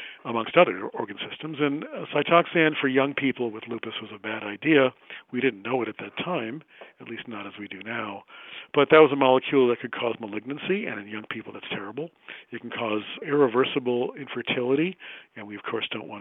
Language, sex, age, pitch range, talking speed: English, male, 50-69, 110-135 Hz, 205 wpm